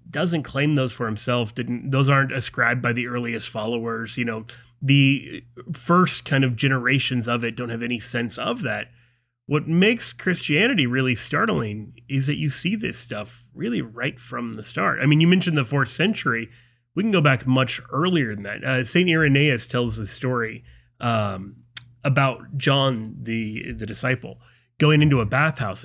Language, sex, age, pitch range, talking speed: English, male, 30-49, 120-150 Hz, 175 wpm